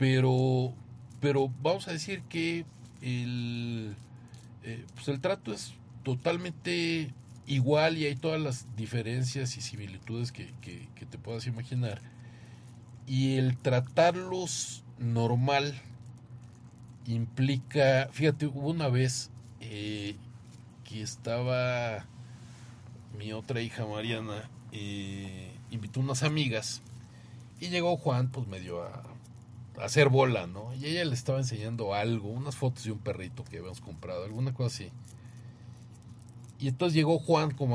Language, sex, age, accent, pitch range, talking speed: Spanish, male, 50-69, Mexican, 115-135 Hz, 120 wpm